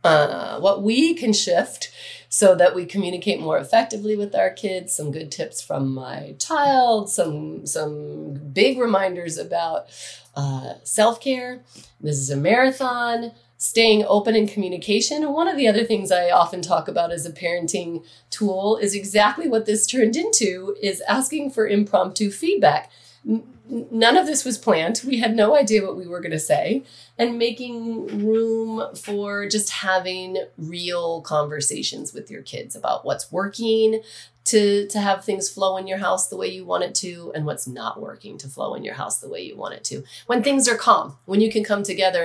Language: English